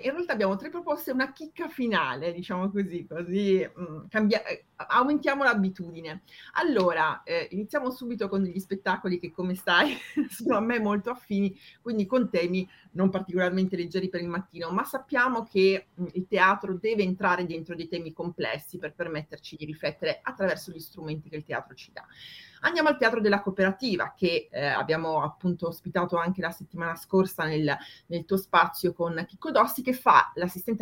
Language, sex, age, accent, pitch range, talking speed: Italian, female, 30-49, native, 160-200 Hz, 165 wpm